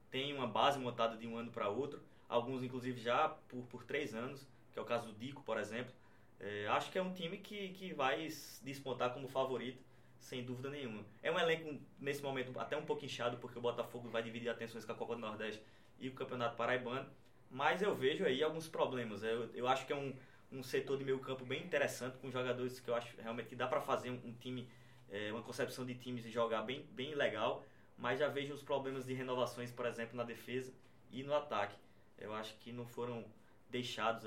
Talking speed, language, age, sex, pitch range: 215 wpm, Portuguese, 20-39, male, 115-130 Hz